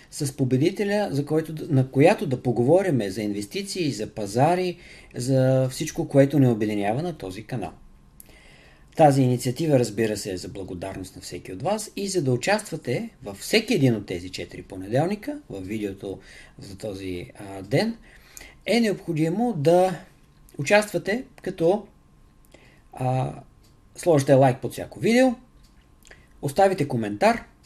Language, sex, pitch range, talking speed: Bulgarian, male, 110-165 Hz, 130 wpm